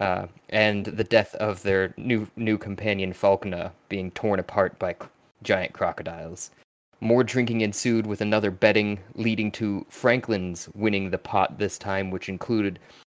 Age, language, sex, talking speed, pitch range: 20-39, English, male, 150 wpm, 100-115 Hz